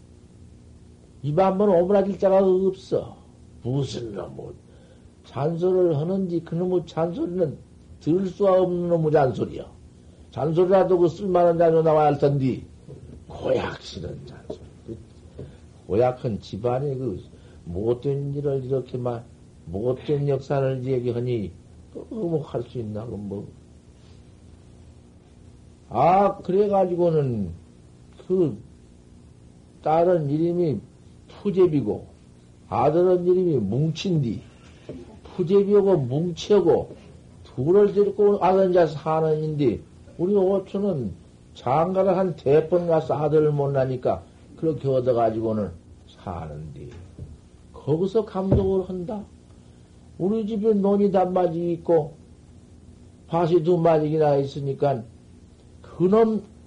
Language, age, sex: Korean, 60-79, male